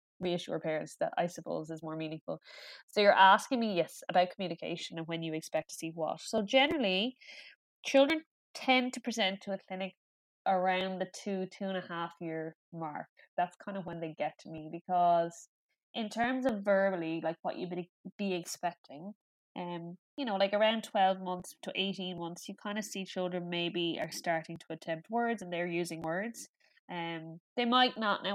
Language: English